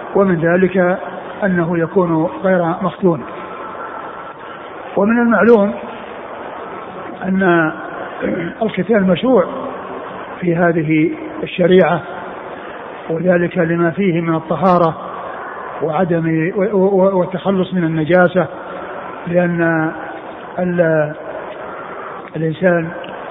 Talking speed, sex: 70 wpm, male